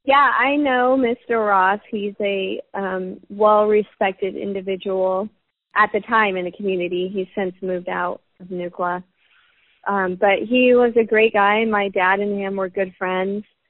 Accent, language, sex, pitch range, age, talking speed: American, English, female, 185-215 Hz, 30-49, 160 wpm